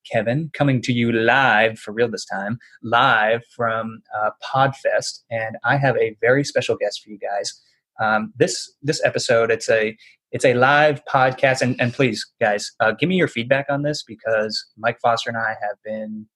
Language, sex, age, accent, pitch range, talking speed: English, male, 20-39, American, 115-145 Hz, 185 wpm